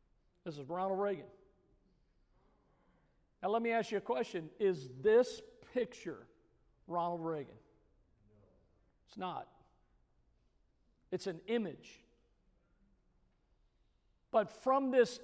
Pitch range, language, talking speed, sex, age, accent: 215-270 Hz, English, 95 wpm, male, 50-69, American